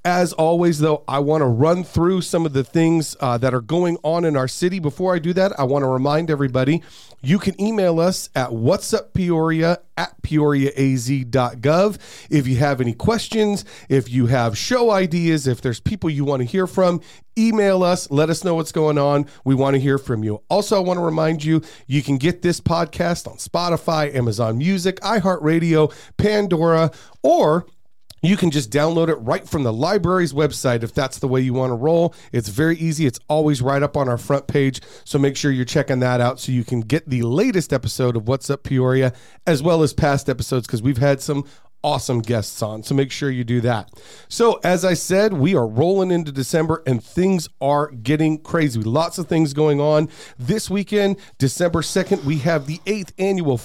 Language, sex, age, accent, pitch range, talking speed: English, male, 40-59, American, 135-175 Hz, 205 wpm